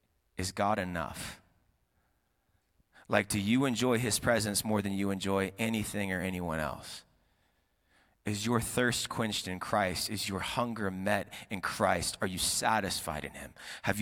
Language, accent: English, American